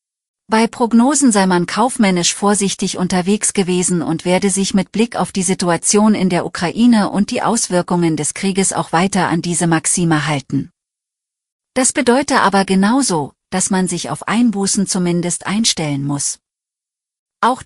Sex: female